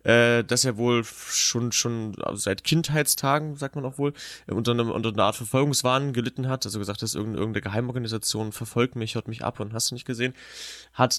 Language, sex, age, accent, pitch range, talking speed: German, male, 20-39, German, 110-125 Hz, 190 wpm